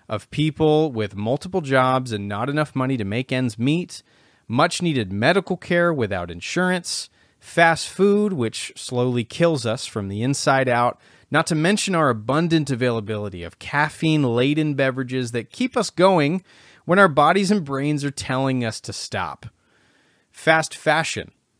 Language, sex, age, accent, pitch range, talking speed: English, male, 30-49, American, 110-160 Hz, 145 wpm